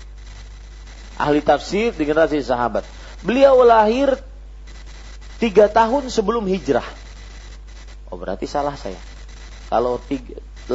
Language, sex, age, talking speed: Malay, male, 30-49, 95 wpm